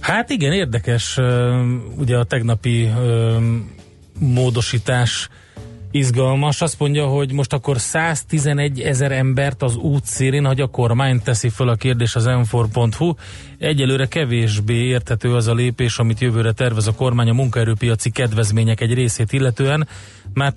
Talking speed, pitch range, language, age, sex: 135 wpm, 110-130 Hz, Hungarian, 30-49, male